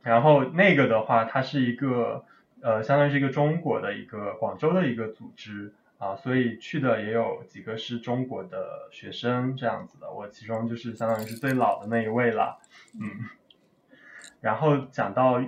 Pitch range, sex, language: 110-135 Hz, male, Chinese